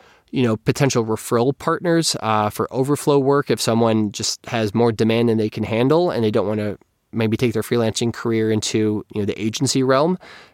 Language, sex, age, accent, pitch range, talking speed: English, male, 20-39, American, 105-125 Hz, 200 wpm